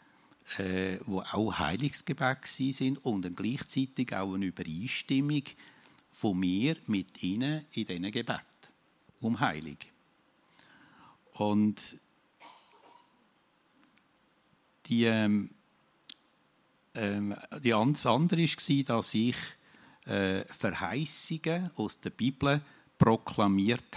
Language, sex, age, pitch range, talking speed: German, male, 60-79, 100-140 Hz, 90 wpm